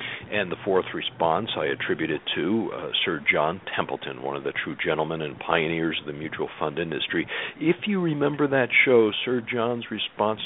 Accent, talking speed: American, 180 wpm